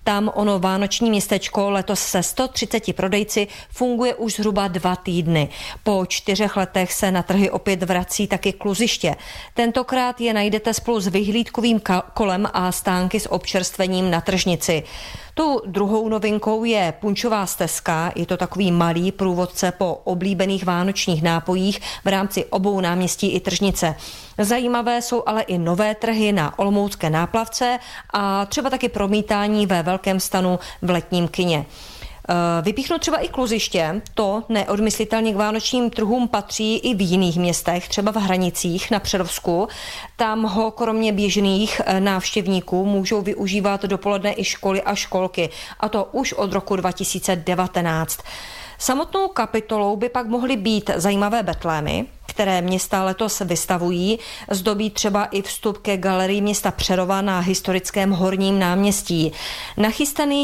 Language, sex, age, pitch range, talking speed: Czech, female, 30-49, 185-220 Hz, 135 wpm